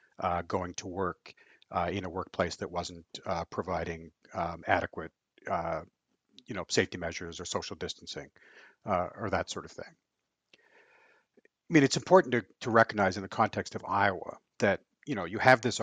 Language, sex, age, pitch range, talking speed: English, male, 60-79, 90-105 Hz, 175 wpm